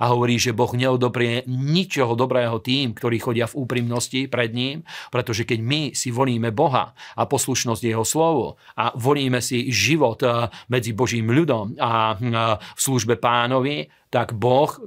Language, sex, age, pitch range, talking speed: Slovak, male, 40-59, 120-130 Hz, 150 wpm